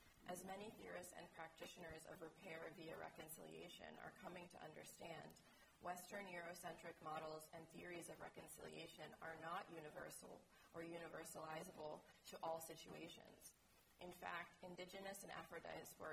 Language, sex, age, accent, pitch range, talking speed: English, female, 30-49, American, 155-180 Hz, 125 wpm